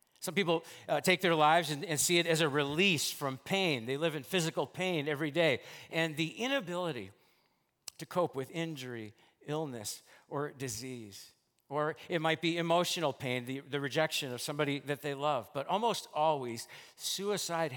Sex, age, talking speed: male, 50-69, 170 wpm